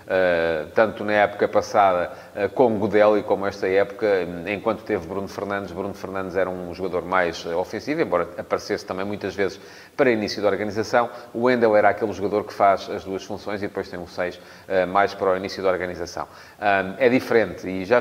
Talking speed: 205 wpm